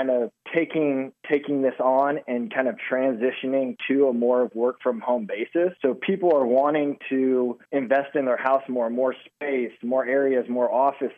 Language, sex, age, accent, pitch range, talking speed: English, male, 20-39, American, 125-145 Hz, 170 wpm